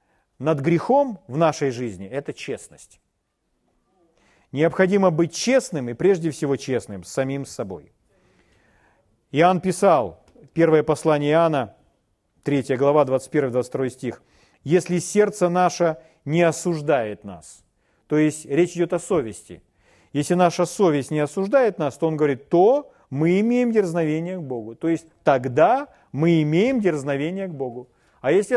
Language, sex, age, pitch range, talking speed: Russian, male, 40-59, 135-185 Hz, 130 wpm